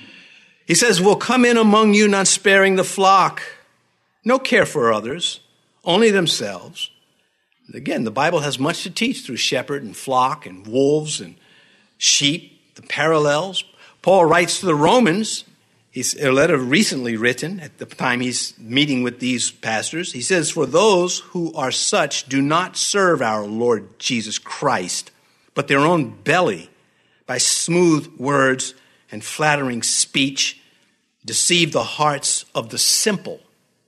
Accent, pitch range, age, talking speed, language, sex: American, 130-195 Hz, 50-69, 145 wpm, English, male